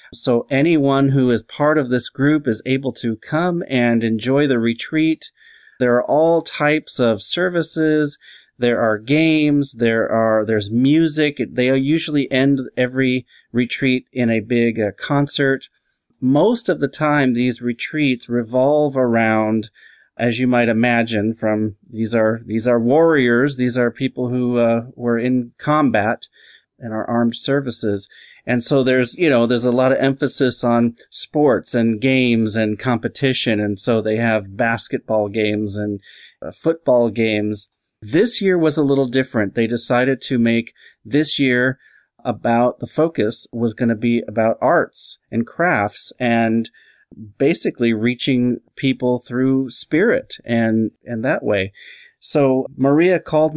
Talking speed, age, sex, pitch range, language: 145 wpm, 30-49, male, 115-140 Hz, English